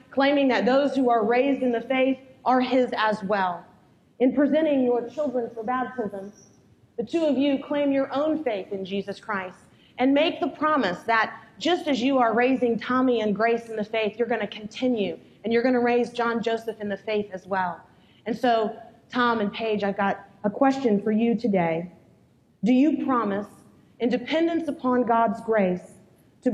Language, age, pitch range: English, 30-49, 205-260 Hz